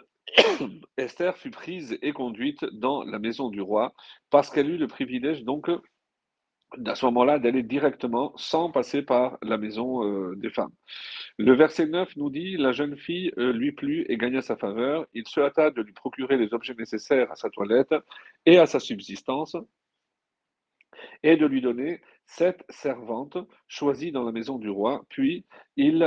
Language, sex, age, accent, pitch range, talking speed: French, male, 40-59, French, 115-160 Hz, 165 wpm